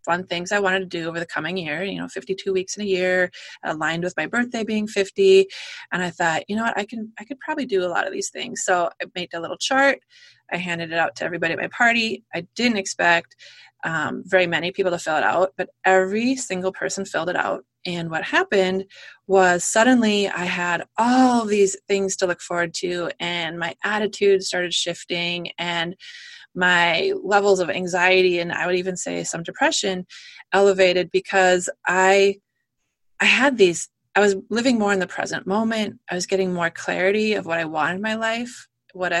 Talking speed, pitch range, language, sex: 200 wpm, 175-210 Hz, English, female